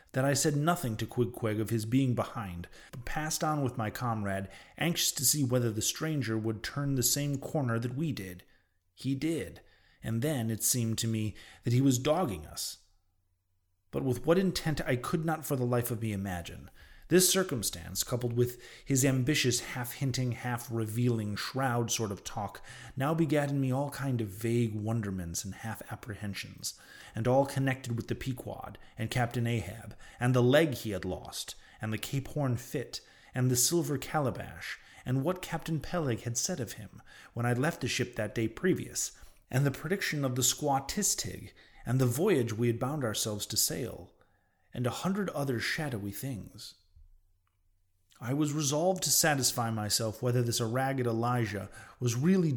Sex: male